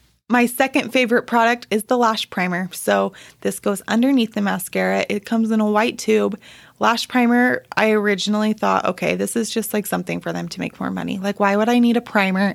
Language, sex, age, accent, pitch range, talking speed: English, female, 20-39, American, 195-235 Hz, 210 wpm